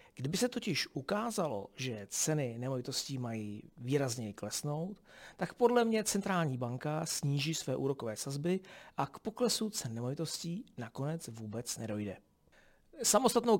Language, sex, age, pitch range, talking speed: Czech, male, 40-59, 125-165 Hz, 125 wpm